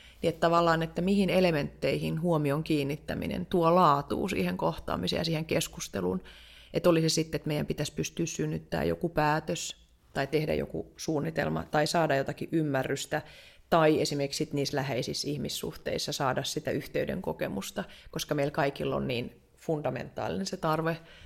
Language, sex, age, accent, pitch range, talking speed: Finnish, female, 30-49, native, 135-165 Hz, 140 wpm